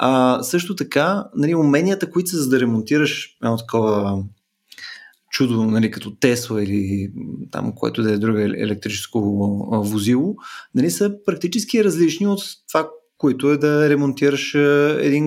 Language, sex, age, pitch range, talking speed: Bulgarian, male, 20-39, 110-150 Hz, 140 wpm